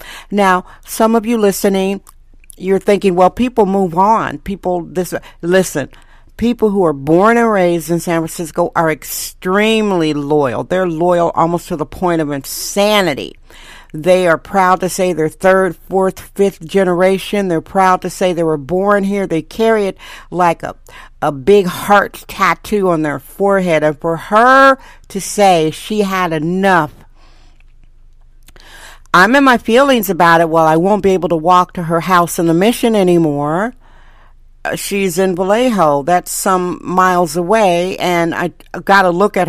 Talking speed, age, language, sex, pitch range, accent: 160 wpm, 50-69, English, female, 165-195 Hz, American